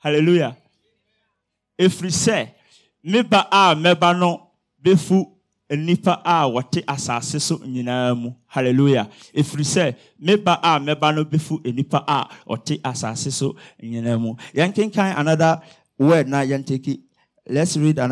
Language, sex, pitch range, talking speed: English, male, 115-160 Hz, 60 wpm